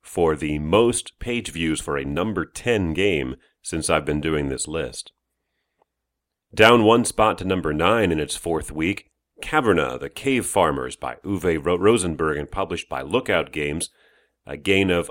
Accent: American